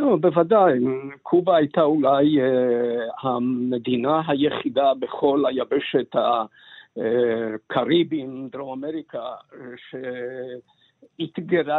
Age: 50-69